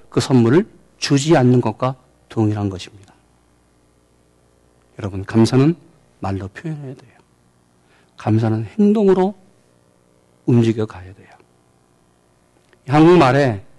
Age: 40-59